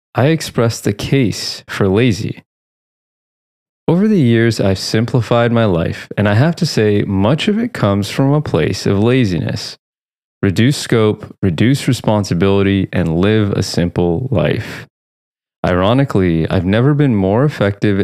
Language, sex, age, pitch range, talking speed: English, male, 20-39, 100-135 Hz, 140 wpm